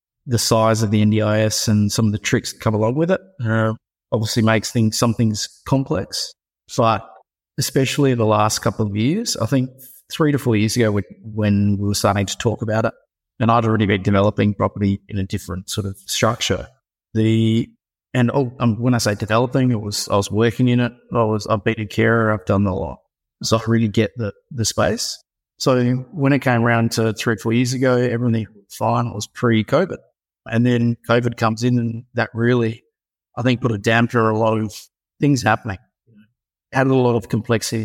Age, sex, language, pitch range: 30-49, male, English, 105-120 Hz